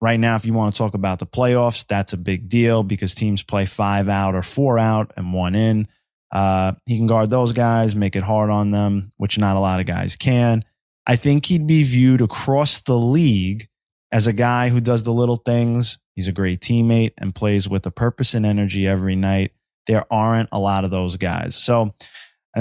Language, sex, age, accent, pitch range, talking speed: English, male, 20-39, American, 95-115 Hz, 215 wpm